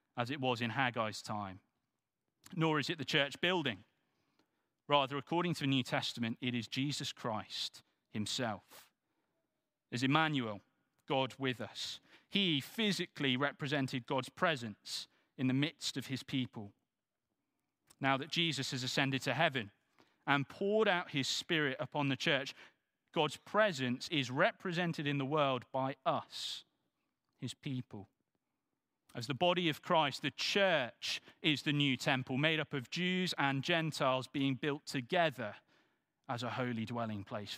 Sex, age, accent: male, 40-59, British